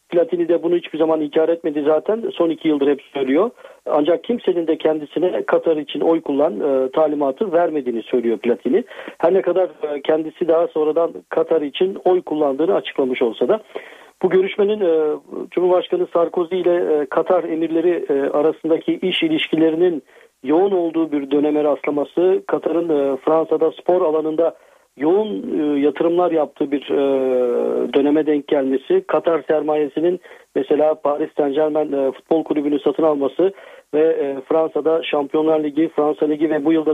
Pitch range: 150-180 Hz